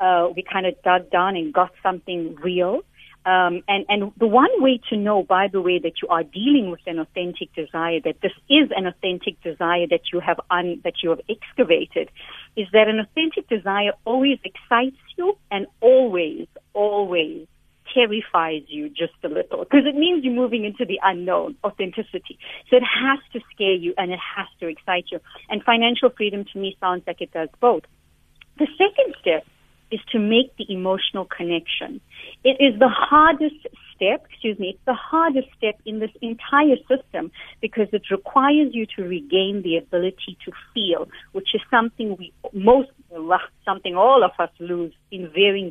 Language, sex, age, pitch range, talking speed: English, female, 50-69, 180-255 Hz, 175 wpm